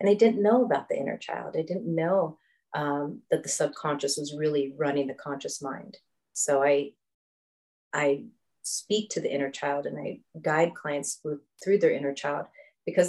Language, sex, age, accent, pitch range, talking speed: English, female, 30-49, American, 140-165 Hz, 175 wpm